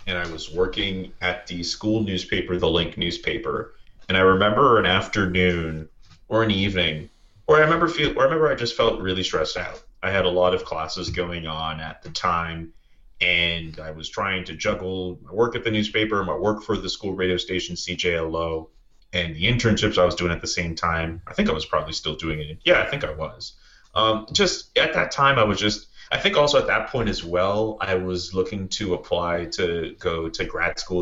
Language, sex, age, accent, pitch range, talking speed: English, male, 30-49, American, 85-105 Hz, 215 wpm